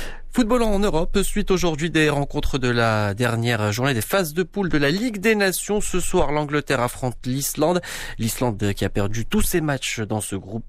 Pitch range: 110-155 Hz